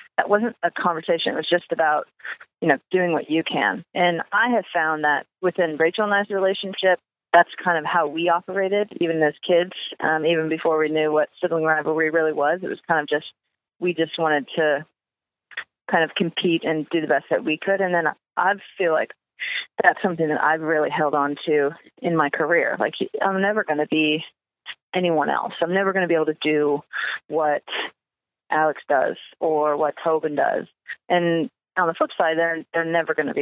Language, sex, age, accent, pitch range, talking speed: English, female, 30-49, American, 155-185 Hz, 200 wpm